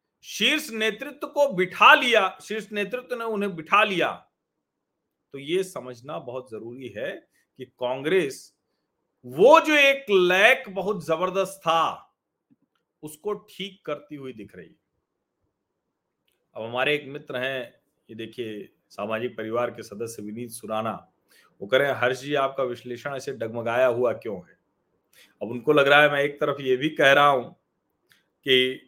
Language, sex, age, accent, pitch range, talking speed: Hindi, male, 40-59, native, 130-215 Hz, 150 wpm